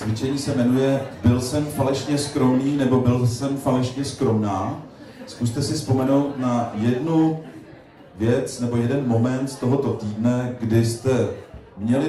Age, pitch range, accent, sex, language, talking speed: 40-59, 110-135 Hz, native, male, Czech, 135 wpm